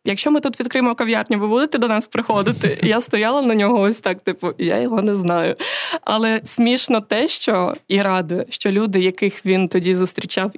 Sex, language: female, Ukrainian